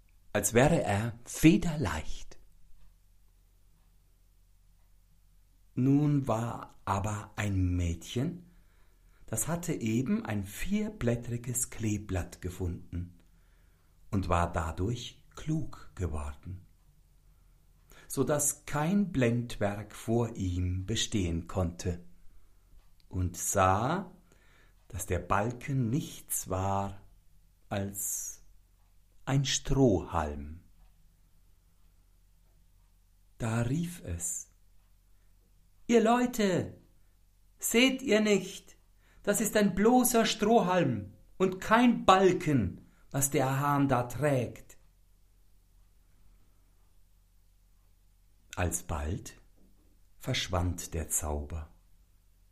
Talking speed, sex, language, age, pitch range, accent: 75 wpm, male, German, 60-79, 85-120 Hz, German